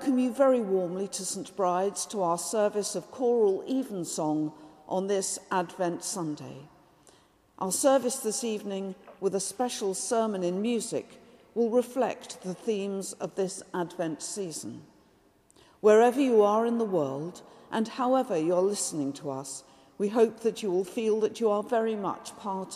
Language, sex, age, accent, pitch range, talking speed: English, female, 50-69, British, 185-230 Hz, 155 wpm